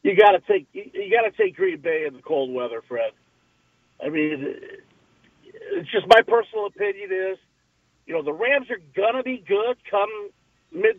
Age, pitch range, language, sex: 50-69, 170-260 Hz, English, male